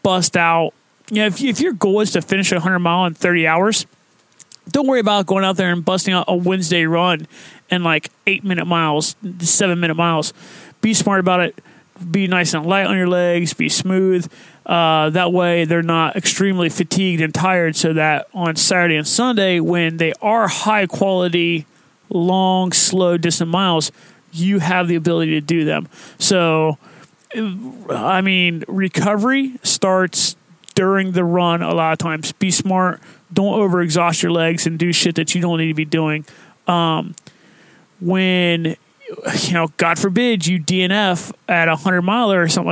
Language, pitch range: English, 170-195 Hz